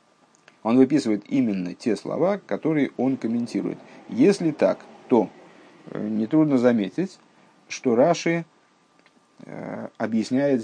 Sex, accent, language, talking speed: male, native, Russian, 90 wpm